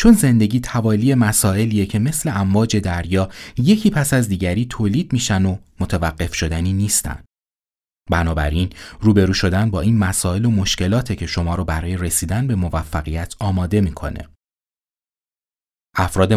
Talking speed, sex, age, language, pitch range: 130 wpm, male, 30-49, Persian, 80-115 Hz